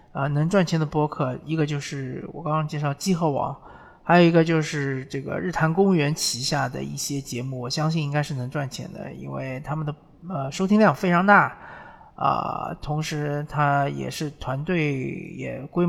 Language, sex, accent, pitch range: Chinese, male, native, 135-165 Hz